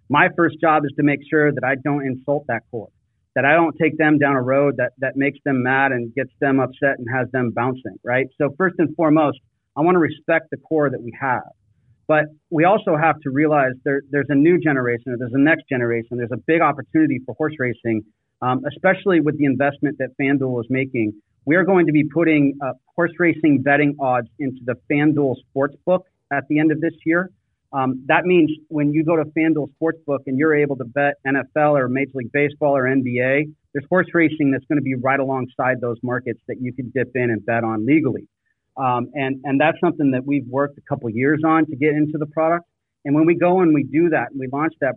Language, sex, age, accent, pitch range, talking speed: English, male, 40-59, American, 130-155 Hz, 230 wpm